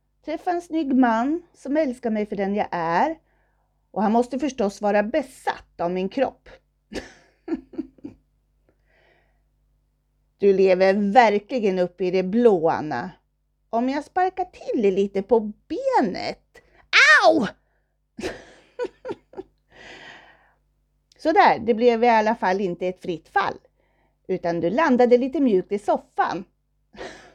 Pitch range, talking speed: 180-265 Hz, 115 wpm